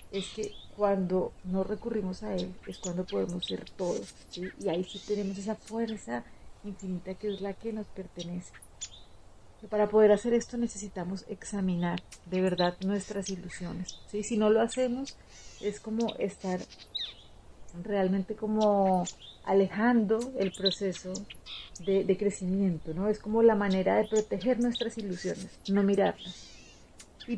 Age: 30-49